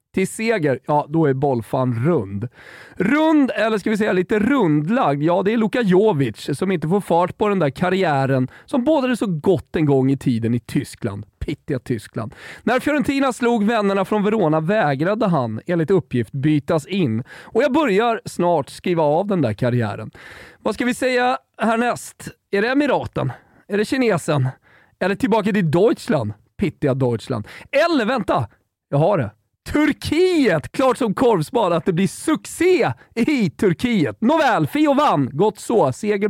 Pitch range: 150-235 Hz